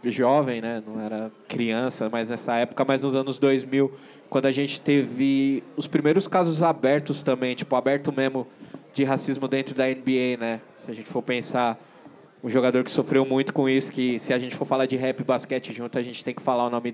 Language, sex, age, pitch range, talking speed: Portuguese, male, 20-39, 125-150 Hz, 215 wpm